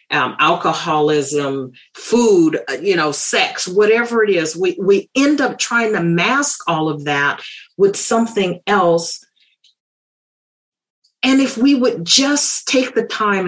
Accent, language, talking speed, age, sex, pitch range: American, English, 135 wpm, 40-59, female, 180-250 Hz